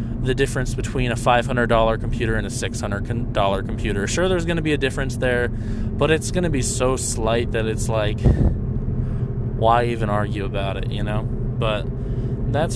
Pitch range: 115-135 Hz